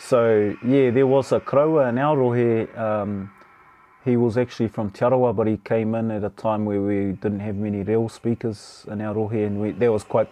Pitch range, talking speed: 100-115 Hz, 220 wpm